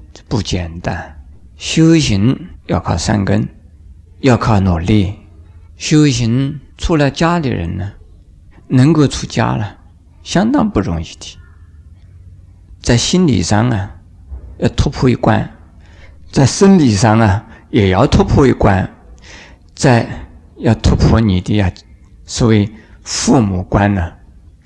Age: 50-69